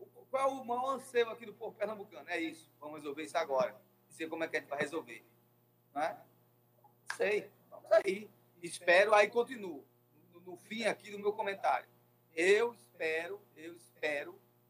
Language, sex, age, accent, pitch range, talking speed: Portuguese, male, 40-59, Brazilian, 155-255 Hz, 170 wpm